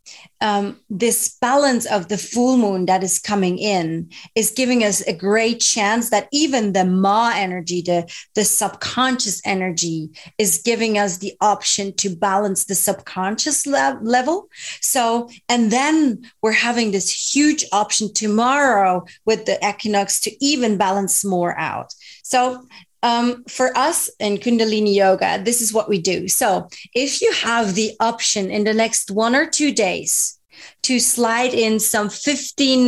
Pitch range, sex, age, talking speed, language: 195-245 Hz, female, 30-49, 150 wpm, English